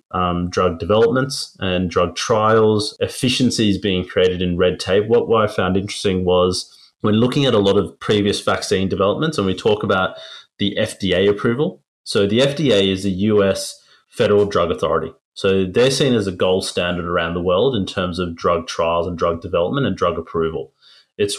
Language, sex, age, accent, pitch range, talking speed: English, male, 30-49, Australian, 90-105 Hz, 180 wpm